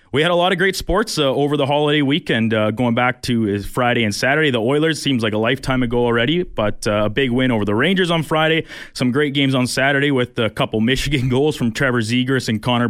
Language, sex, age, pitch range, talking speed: English, male, 20-39, 120-145 Hz, 240 wpm